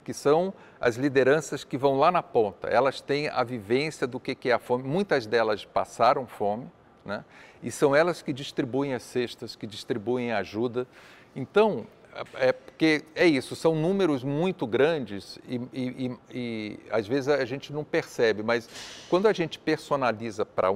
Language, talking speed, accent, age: Portuguese, 170 wpm, Brazilian, 50-69